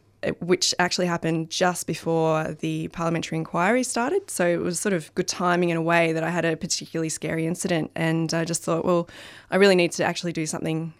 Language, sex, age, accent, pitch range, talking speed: English, female, 20-39, Australian, 165-190 Hz, 205 wpm